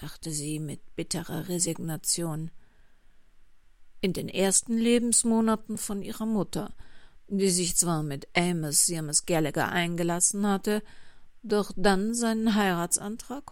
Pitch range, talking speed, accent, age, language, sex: 165-210 Hz, 105 wpm, German, 50-69, German, female